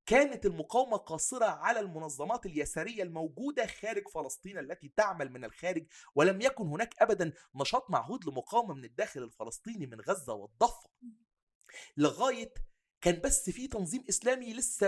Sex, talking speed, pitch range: male, 135 wpm, 160-235 Hz